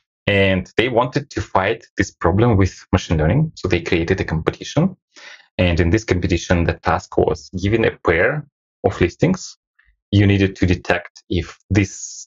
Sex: male